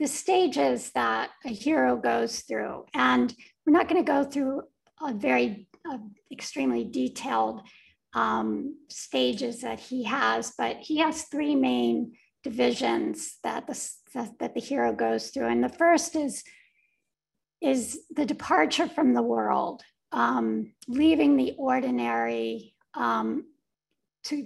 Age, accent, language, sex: 50-69, American, English, female